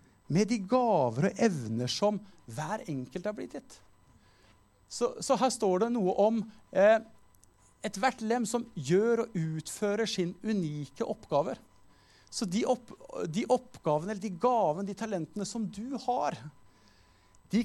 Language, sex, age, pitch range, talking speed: English, male, 50-69, 155-235 Hz, 145 wpm